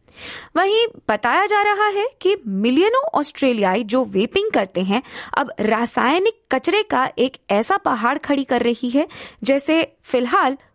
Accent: native